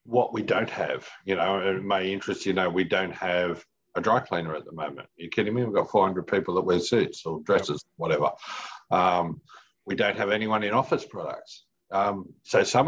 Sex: male